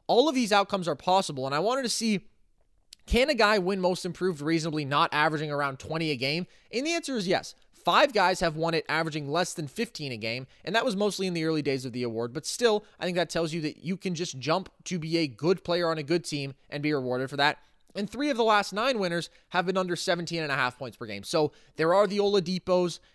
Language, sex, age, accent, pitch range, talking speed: English, male, 20-39, American, 150-190 Hz, 255 wpm